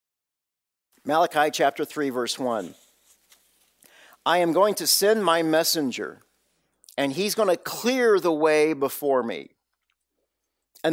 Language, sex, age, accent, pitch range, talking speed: English, male, 50-69, American, 135-195 Hz, 120 wpm